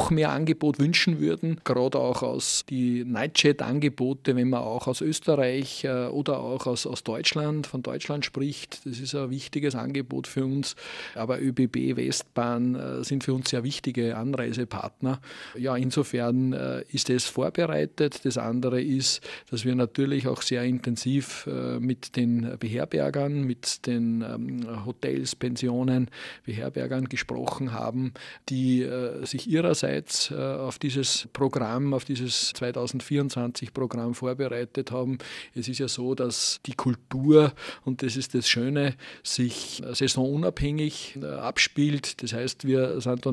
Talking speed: 125 wpm